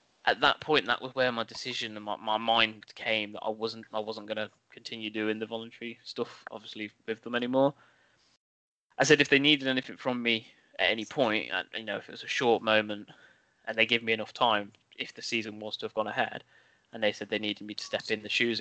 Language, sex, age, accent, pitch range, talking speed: English, male, 10-29, British, 110-125 Hz, 240 wpm